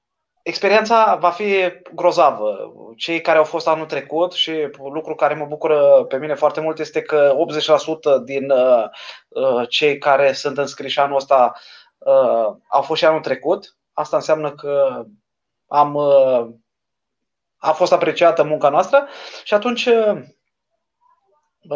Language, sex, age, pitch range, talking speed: Romanian, male, 20-39, 155-190 Hz, 135 wpm